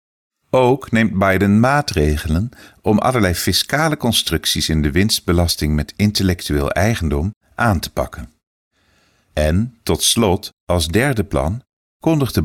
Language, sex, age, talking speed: English, male, 50-69, 115 wpm